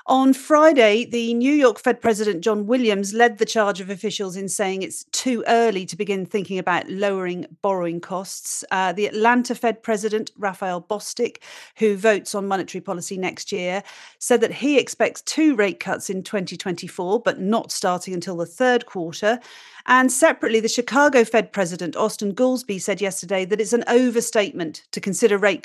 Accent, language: British, English